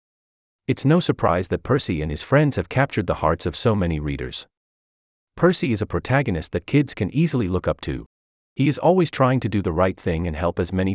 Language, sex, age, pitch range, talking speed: English, male, 40-59, 75-120 Hz, 220 wpm